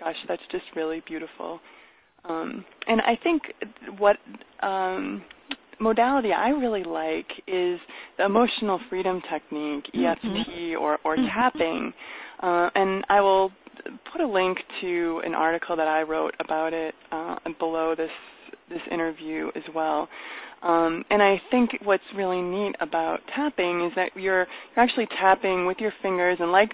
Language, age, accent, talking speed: English, 20-39, American, 150 wpm